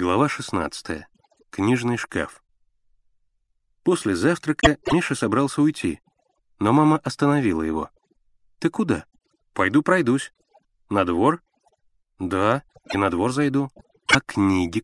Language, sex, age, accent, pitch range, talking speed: Russian, male, 30-49, native, 100-145 Hz, 105 wpm